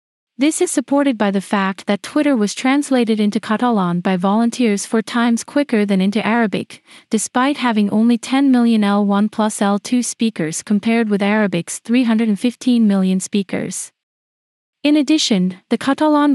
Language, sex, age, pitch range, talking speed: English, female, 30-49, 200-245 Hz, 145 wpm